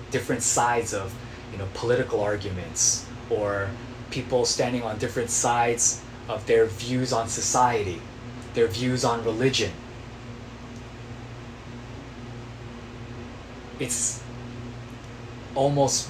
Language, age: Korean, 20-39